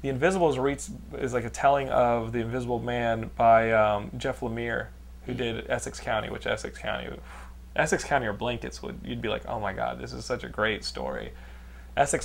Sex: male